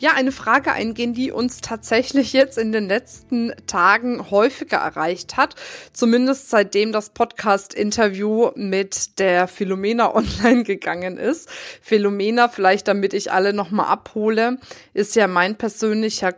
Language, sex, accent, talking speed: German, female, German, 135 wpm